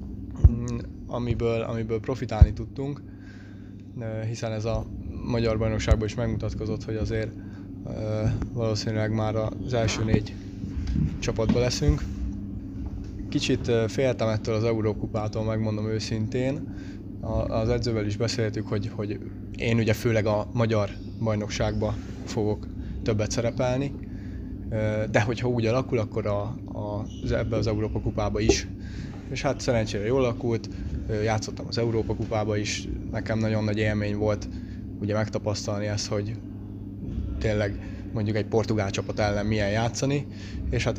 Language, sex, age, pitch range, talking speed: Hungarian, male, 20-39, 100-115 Hz, 125 wpm